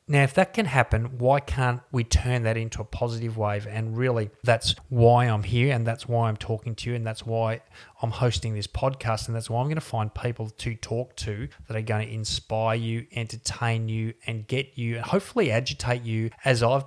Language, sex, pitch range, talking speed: English, male, 110-125 Hz, 220 wpm